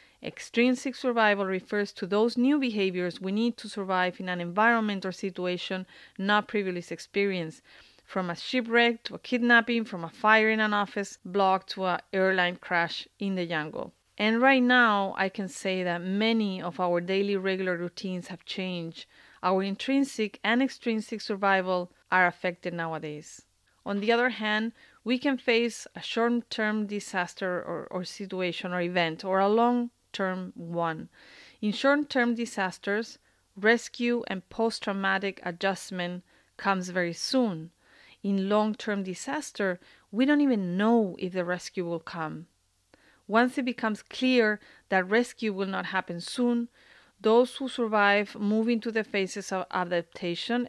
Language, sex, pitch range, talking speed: English, female, 180-230 Hz, 150 wpm